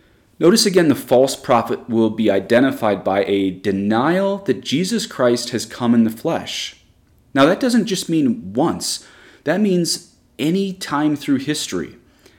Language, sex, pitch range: English, male, 100-130 Hz